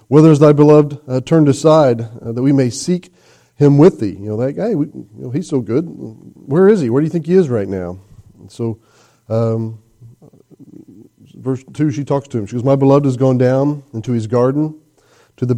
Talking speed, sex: 205 wpm, male